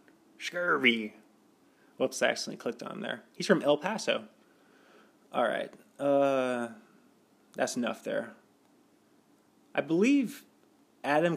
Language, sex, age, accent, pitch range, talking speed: English, male, 20-39, American, 120-145 Hz, 105 wpm